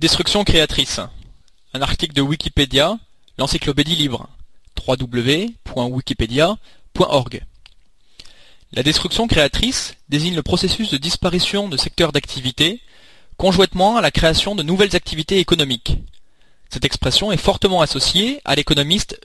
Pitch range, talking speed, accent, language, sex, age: 135-190 Hz, 110 wpm, French, French, male, 20-39